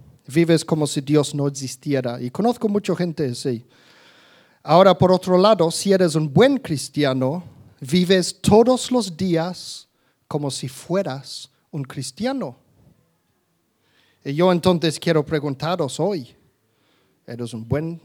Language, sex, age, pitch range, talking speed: Spanish, male, 50-69, 140-200 Hz, 125 wpm